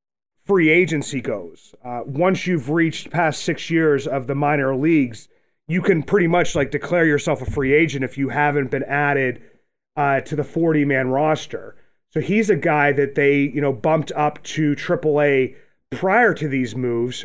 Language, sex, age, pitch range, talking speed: English, male, 30-49, 140-170 Hz, 180 wpm